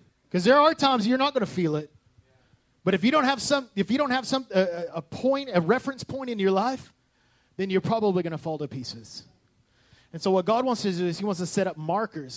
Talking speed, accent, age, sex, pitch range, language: 250 wpm, American, 30-49, male, 150-195 Hz, English